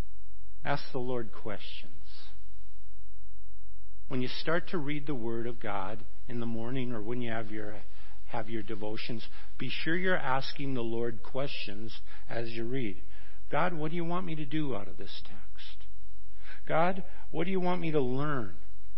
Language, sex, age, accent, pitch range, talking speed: English, male, 50-69, American, 95-145 Hz, 170 wpm